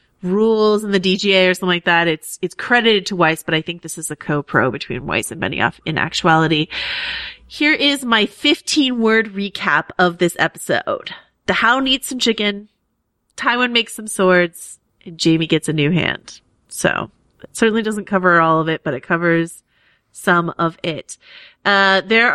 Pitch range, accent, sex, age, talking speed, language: 170-220 Hz, American, female, 30-49, 175 wpm, English